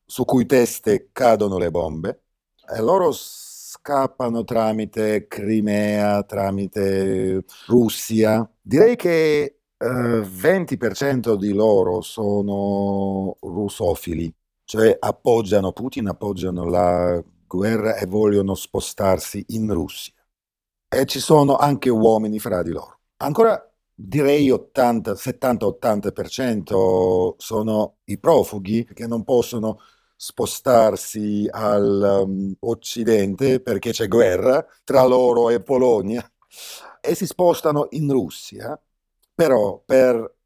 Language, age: Italian, 50-69